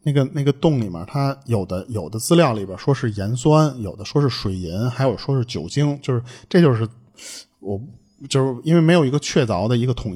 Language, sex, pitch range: Chinese, male, 105-150 Hz